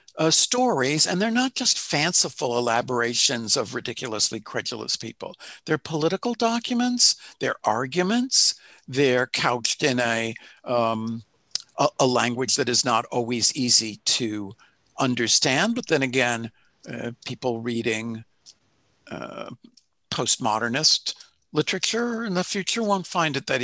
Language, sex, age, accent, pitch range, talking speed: Portuguese, male, 60-79, American, 120-180 Hz, 120 wpm